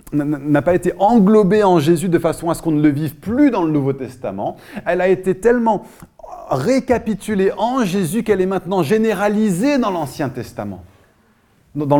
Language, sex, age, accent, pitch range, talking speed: French, male, 30-49, French, 115-175 Hz, 170 wpm